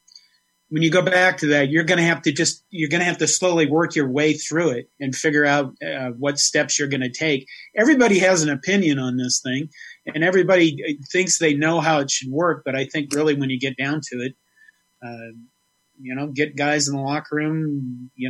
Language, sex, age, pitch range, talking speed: English, male, 30-49, 135-170 Hz, 225 wpm